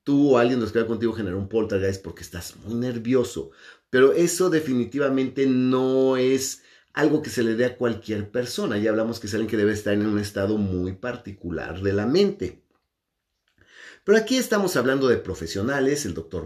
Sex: male